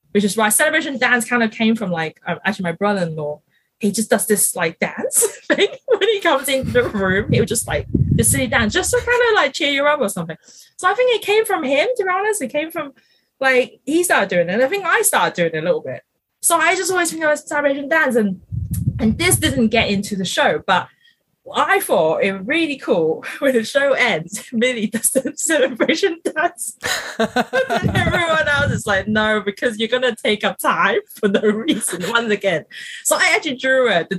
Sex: female